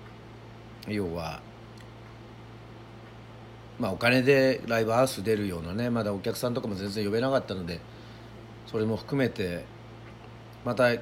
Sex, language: male, Japanese